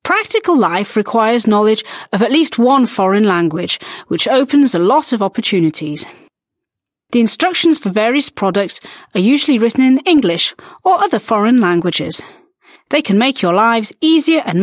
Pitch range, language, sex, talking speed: 195-290 Hz, Slovak, female, 150 wpm